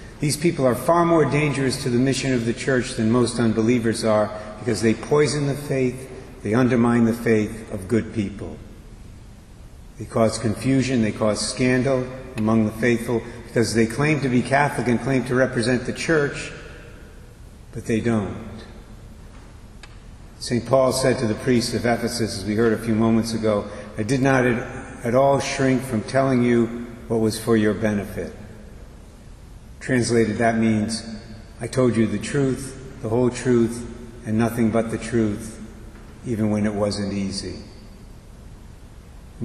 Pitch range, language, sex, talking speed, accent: 105-125 Hz, English, male, 155 wpm, American